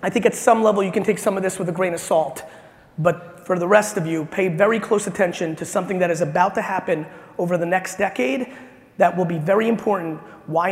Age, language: 30-49, English